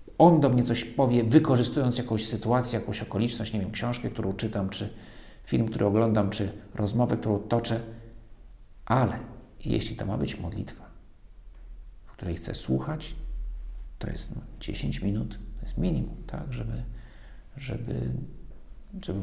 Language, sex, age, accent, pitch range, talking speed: Polish, male, 50-69, native, 90-115 Hz, 135 wpm